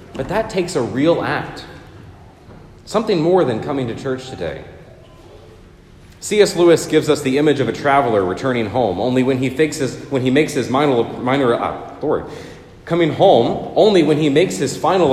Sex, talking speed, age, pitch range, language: male, 175 wpm, 30-49, 130-175 Hz, English